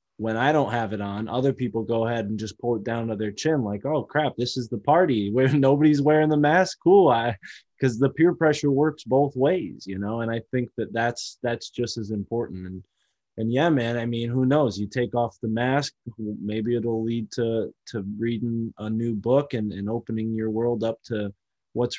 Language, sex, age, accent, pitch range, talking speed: English, male, 20-39, American, 105-125 Hz, 220 wpm